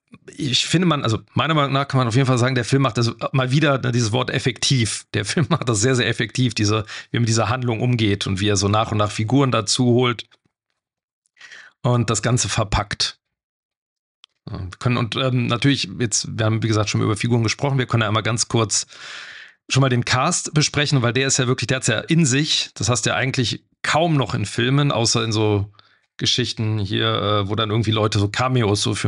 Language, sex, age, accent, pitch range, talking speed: German, male, 40-59, German, 115-140 Hz, 220 wpm